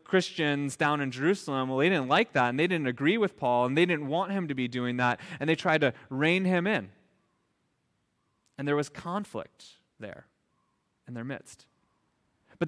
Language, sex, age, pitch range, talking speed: English, male, 30-49, 135-185 Hz, 190 wpm